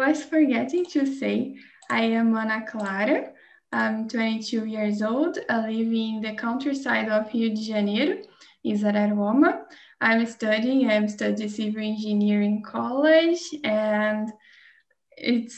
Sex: female